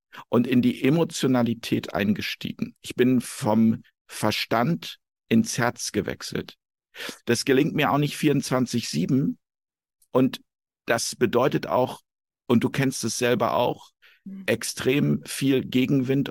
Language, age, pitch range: German, 50-69, 115-140 Hz